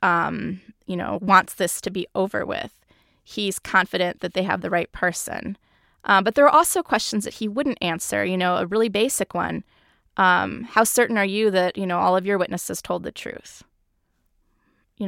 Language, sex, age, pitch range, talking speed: English, female, 20-39, 180-220 Hz, 195 wpm